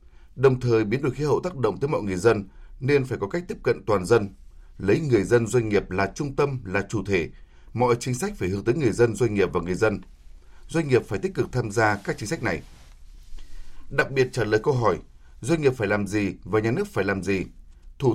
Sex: male